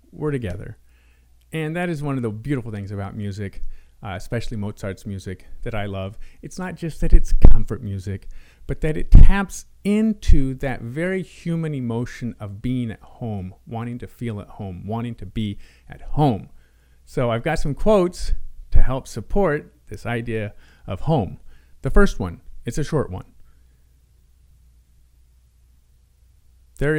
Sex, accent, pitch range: male, American, 90-140 Hz